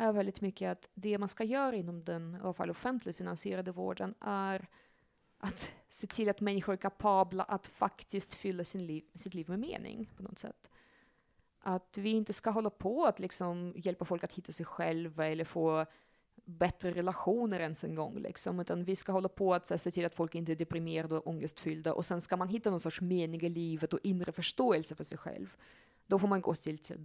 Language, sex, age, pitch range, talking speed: Swedish, female, 20-39, 165-195 Hz, 205 wpm